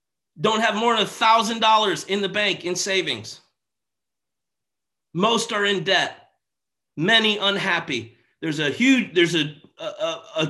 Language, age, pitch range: English, 30-49, 210-275 Hz